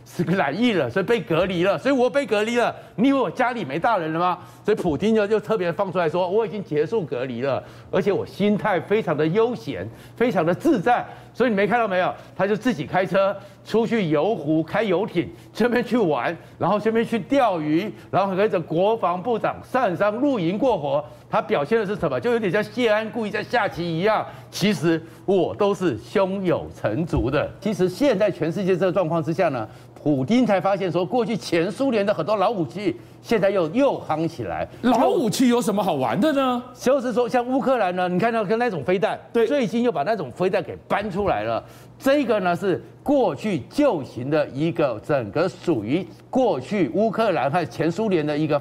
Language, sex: Chinese, male